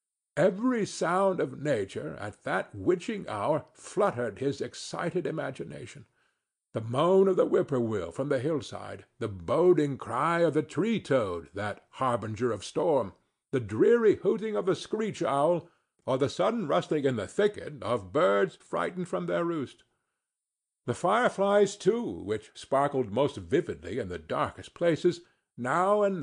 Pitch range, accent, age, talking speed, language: 125-200 Hz, American, 60-79, 140 wpm, English